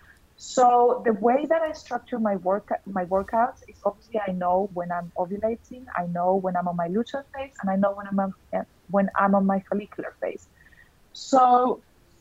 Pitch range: 190-235 Hz